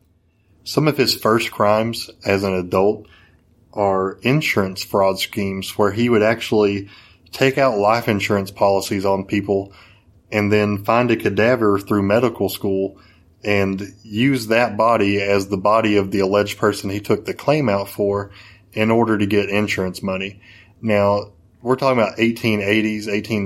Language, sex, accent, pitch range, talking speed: English, male, American, 95-110 Hz, 150 wpm